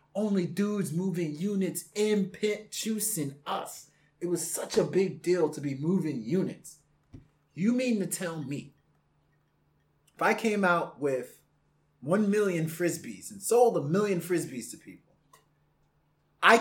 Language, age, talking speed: English, 30-49, 140 wpm